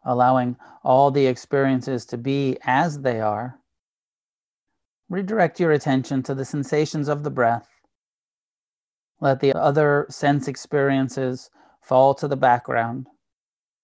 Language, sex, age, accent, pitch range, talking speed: English, male, 30-49, American, 125-145 Hz, 115 wpm